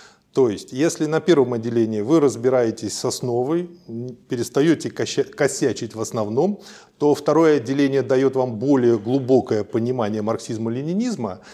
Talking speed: 120 wpm